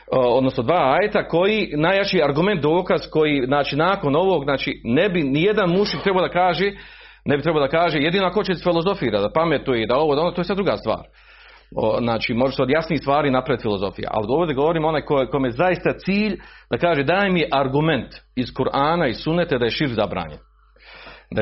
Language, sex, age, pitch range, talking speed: Croatian, male, 40-59, 135-180 Hz, 195 wpm